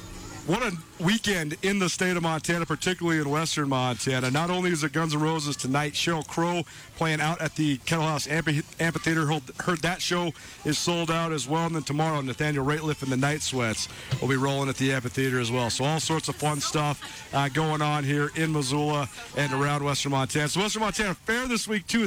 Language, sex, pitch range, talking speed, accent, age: English, male, 140-175 Hz, 215 wpm, American, 40-59